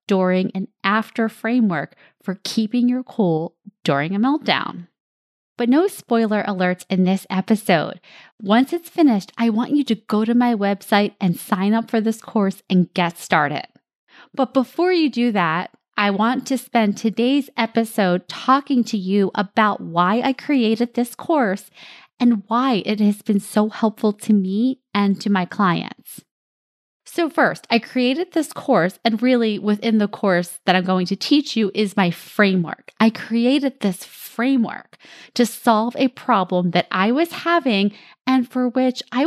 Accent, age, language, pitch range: American, 20-39, English, 200-250 Hz